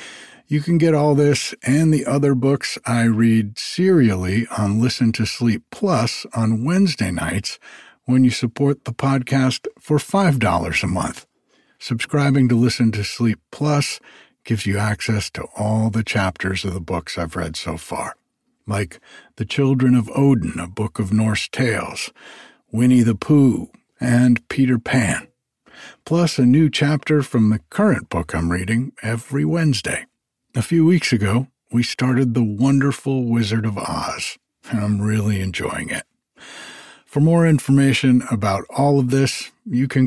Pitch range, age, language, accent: 110-135 Hz, 60-79, English, American